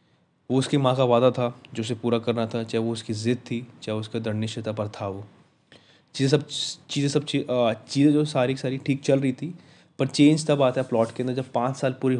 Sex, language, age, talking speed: male, Hindi, 20-39, 235 wpm